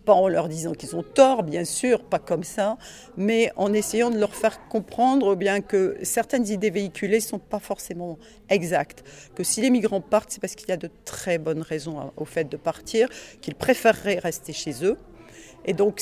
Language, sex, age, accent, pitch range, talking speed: French, female, 50-69, French, 165-210 Hz, 200 wpm